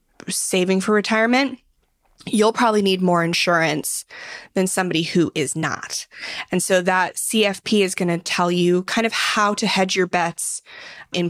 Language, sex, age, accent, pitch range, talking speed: English, female, 20-39, American, 175-225 Hz, 160 wpm